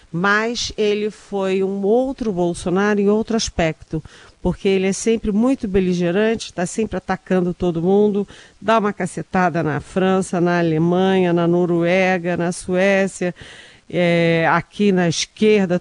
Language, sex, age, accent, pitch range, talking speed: Portuguese, female, 40-59, Brazilian, 155-195 Hz, 135 wpm